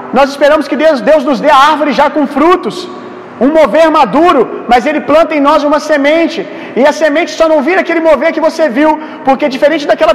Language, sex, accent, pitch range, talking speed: Gujarati, male, Brazilian, 275-315 Hz, 215 wpm